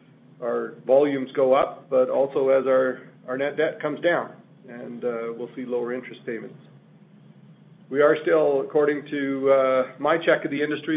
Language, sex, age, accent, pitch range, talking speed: English, male, 40-59, American, 130-160 Hz, 170 wpm